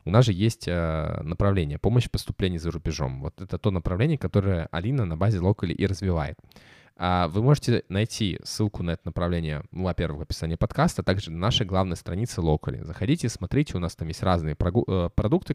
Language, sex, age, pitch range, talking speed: Russian, male, 20-39, 85-110 Hz, 180 wpm